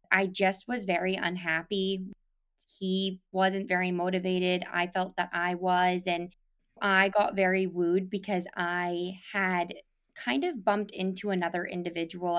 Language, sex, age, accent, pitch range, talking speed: English, female, 20-39, American, 175-195 Hz, 135 wpm